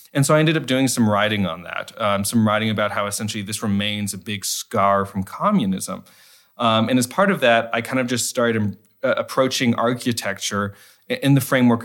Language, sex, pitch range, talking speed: Hungarian, male, 100-115 Hz, 205 wpm